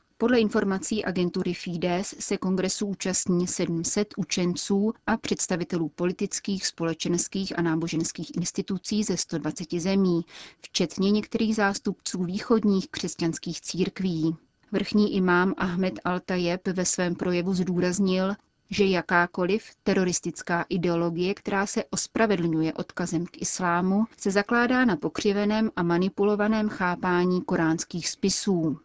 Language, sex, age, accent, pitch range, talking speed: Czech, female, 30-49, native, 175-205 Hz, 110 wpm